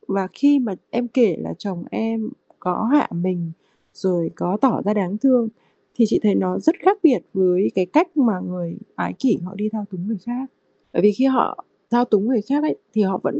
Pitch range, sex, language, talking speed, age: 180-235 Hz, female, Vietnamese, 220 wpm, 20-39